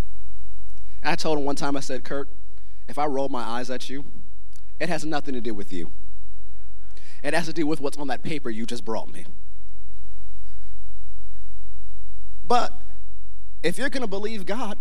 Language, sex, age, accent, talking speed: English, male, 30-49, American, 165 wpm